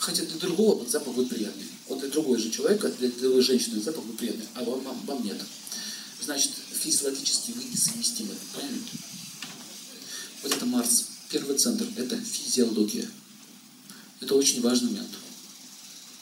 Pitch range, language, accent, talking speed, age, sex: 150-240 Hz, Russian, native, 145 wpm, 40-59, male